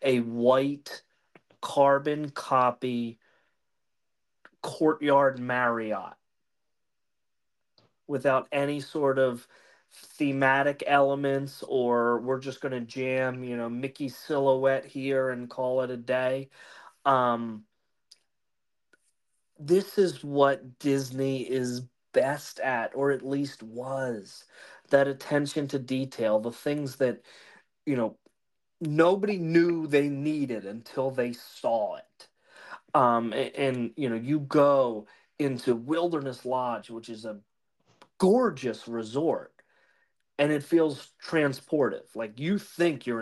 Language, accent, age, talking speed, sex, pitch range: English, American, 30-49, 110 wpm, male, 120-145 Hz